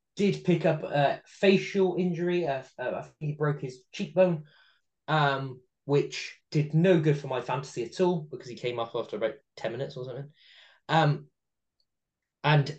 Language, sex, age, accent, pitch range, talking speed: English, male, 20-39, British, 125-160 Hz, 160 wpm